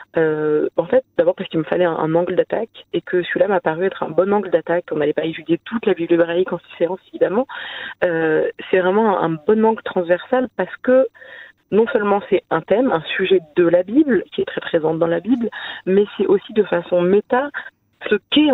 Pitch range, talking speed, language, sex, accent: 170-225 Hz, 215 wpm, French, female, French